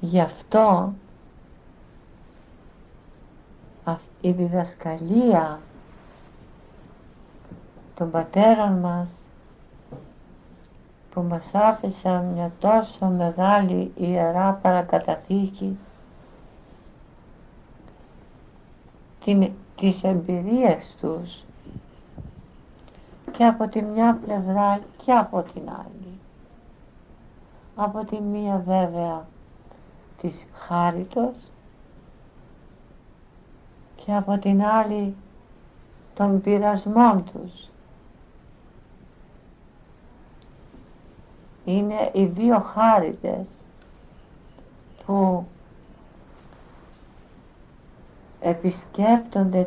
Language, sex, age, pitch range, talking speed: English, female, 60-79, 175-210 Hz, 55 wpm